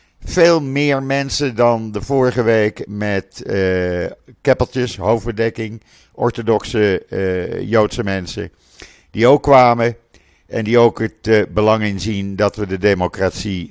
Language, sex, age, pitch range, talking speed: Dutch, male, 50-69, 95-125 Hz, 130 wpm